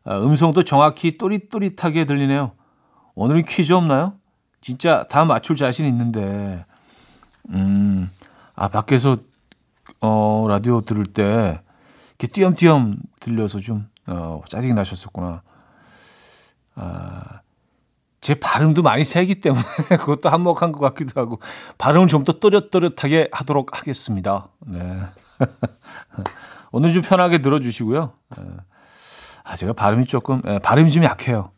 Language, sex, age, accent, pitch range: Korean, male, 40-59, native, 110-160 Hz